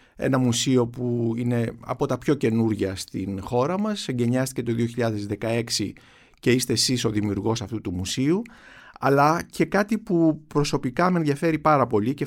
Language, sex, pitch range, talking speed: Greek, male, 115-155 Hz, 155 wpm